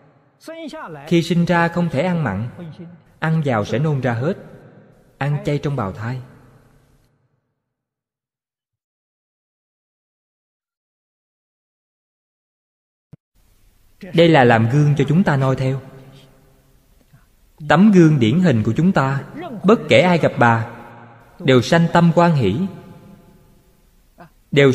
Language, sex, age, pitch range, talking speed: Vietnamese, male, 20-39, 125-170 Hz, 110 wpm